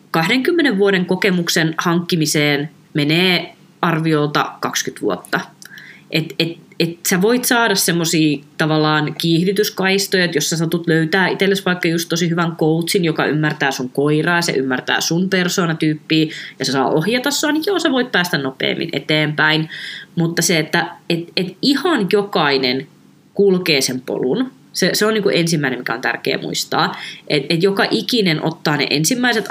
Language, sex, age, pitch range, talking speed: Finnish, female, 20-39, 155-190 Hz, 155 wpm